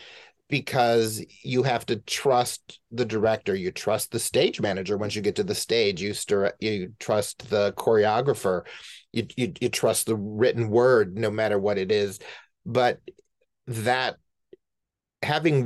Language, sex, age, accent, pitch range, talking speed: English, male, 30-49, American, 105-125 Hz, 150 wpm